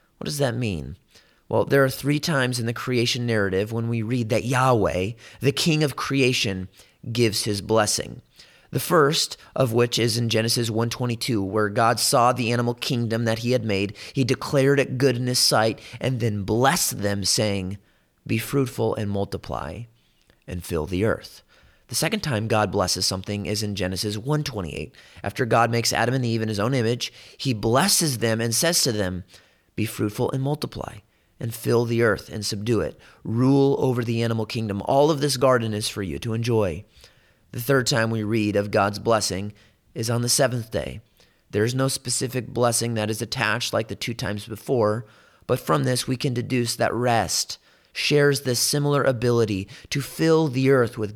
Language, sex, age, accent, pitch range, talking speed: English, male, 30-49, American, 105-130 Hz, 190 wpm